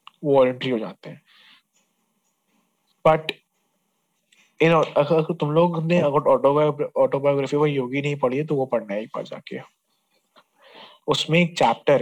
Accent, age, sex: Indian, 20-39, male